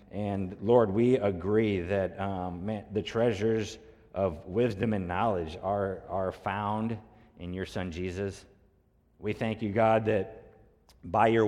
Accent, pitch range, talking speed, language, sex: American, 100-115 Hz, 135 wpm, English, male